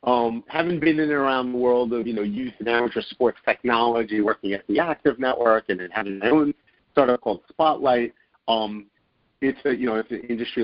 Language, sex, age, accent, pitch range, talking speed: English, male, 50-69, American, 100-125 Hz, 205 wpm